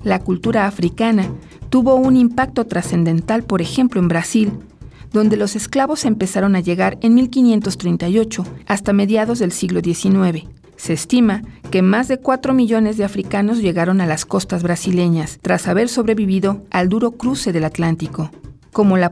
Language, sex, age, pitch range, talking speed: Spanish, female, 40-59, 175-230 Hz, 150 wpm